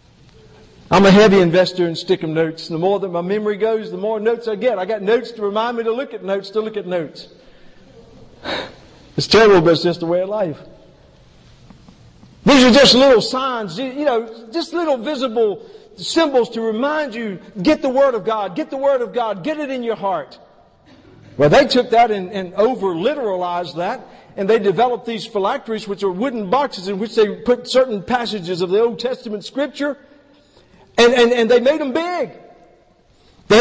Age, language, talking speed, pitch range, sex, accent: 50-69, English, 190 wpm, 205-290 Hz, male, American